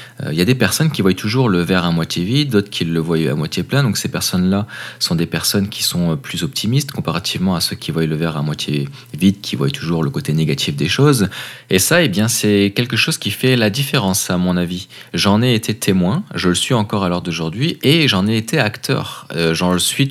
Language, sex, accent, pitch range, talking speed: French, male, French, 90-120 Hz, 245 wpm